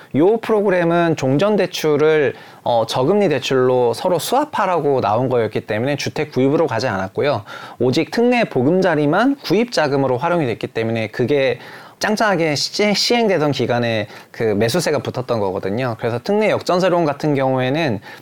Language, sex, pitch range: Korean, male, 115-165 Hz